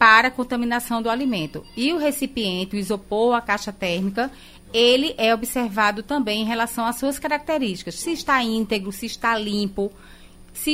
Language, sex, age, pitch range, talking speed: Portuguese, female, 30-49, 210-265 Hz, 155 wpm